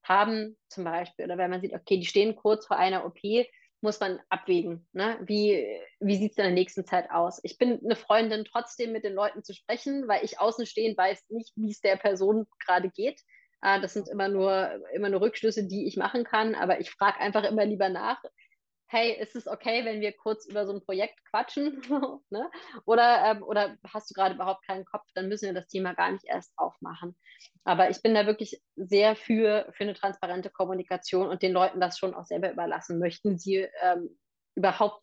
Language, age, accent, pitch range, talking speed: German, 20-39, German, 185-220 Hz, 200 wpm